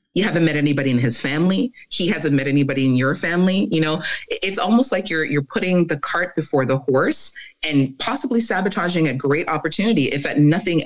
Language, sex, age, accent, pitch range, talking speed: English, female, 30-49, American, 145-195 Hz, 200 wpm